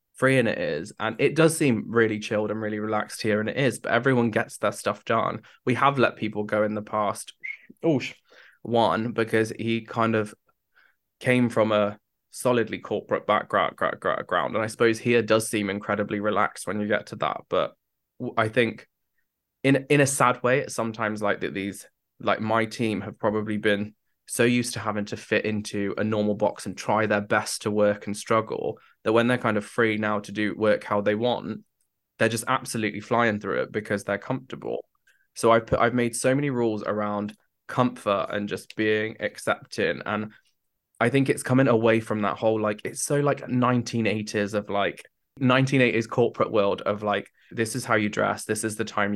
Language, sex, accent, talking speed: English, male, British, 195 wpm